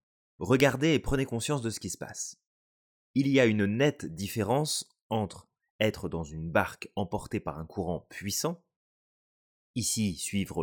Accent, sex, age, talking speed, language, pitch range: French, male, 30-49, 150 wpm, French, 90-125 Hz